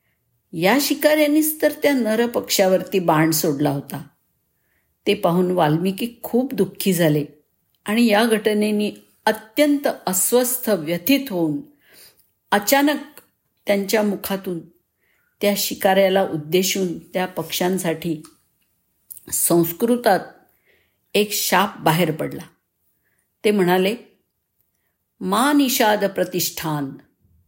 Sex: female